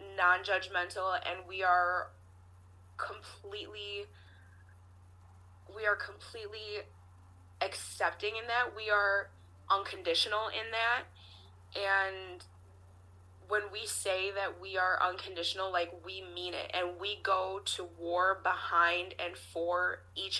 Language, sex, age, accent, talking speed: English, female, 20-39, American, 110 wpm